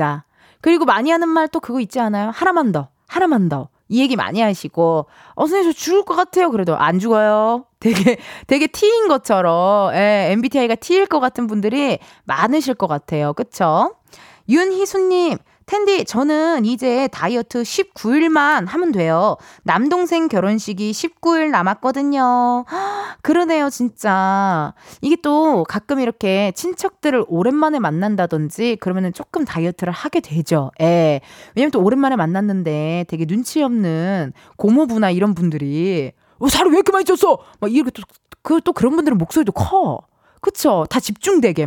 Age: 20-39